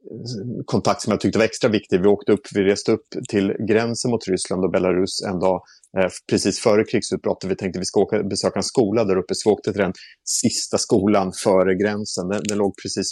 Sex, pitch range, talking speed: male, 95-105 Hz, 220 wpm